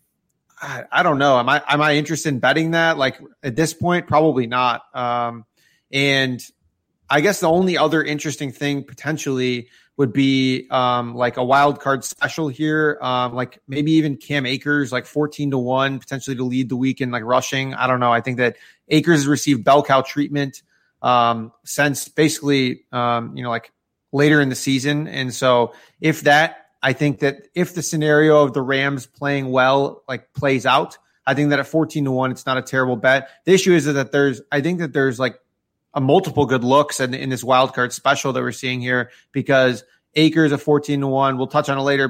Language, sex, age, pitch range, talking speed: English, male, 30-49, 130-145 Hz, 200 wpm